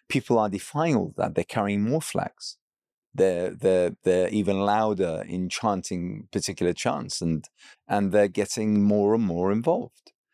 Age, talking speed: 30-49, 150 wpm